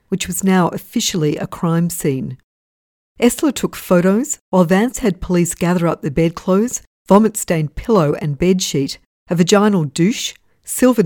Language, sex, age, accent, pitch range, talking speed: English, female, 50-69, Australian, 155-195 Hz, 140 wpm